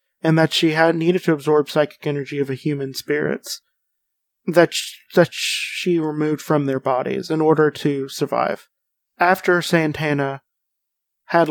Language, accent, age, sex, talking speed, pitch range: English, American, 30-49, male, 150 wpm, 145-170 Hz